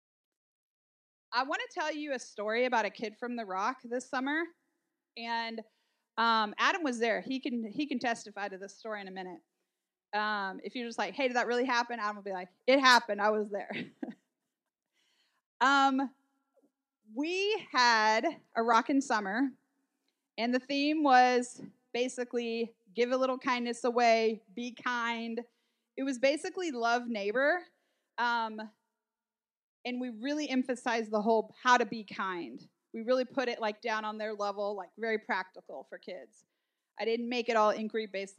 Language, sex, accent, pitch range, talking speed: English, female, American, 220-275 Hz, 165 wpm